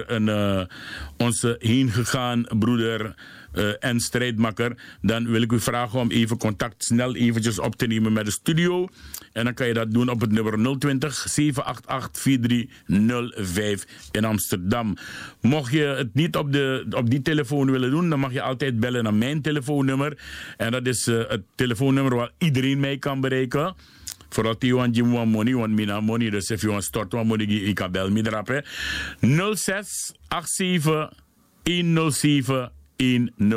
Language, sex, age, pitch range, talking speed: Dutch, male, 50-69, 110-135 Hz, 145 wpm